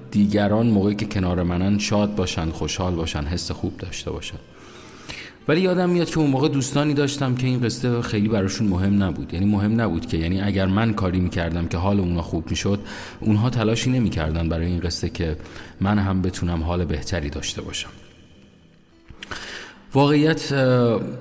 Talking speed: 160 wpm